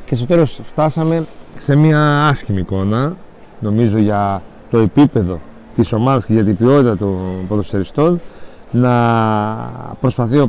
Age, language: 40-59, Greek